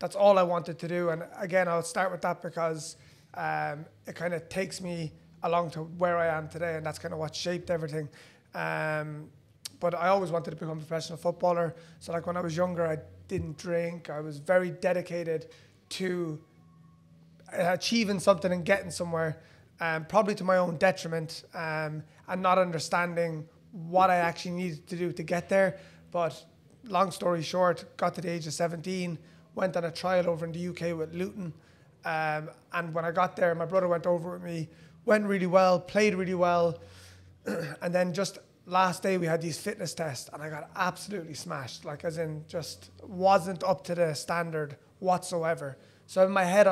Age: 20-39